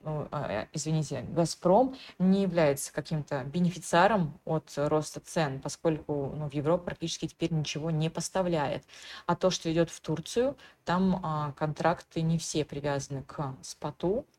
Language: Russian